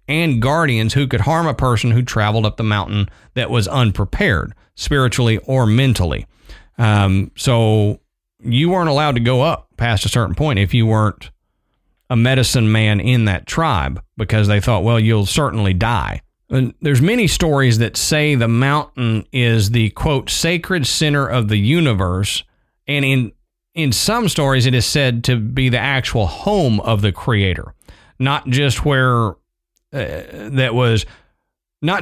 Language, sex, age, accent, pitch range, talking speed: English, male, 40-59, American, 110-140 Hz, 155 wpm